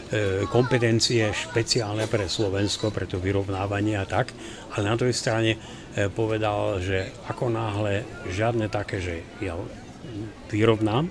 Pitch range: 100-115 Hz